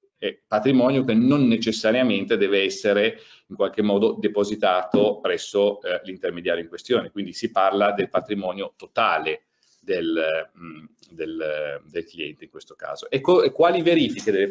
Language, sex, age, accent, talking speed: Italian, male, 40-59, native, 145 wpm